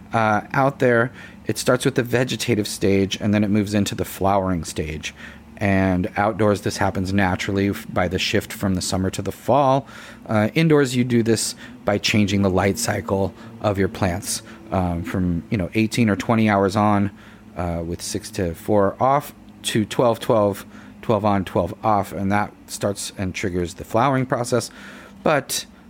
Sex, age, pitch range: male, 30-49, 95-115 Hz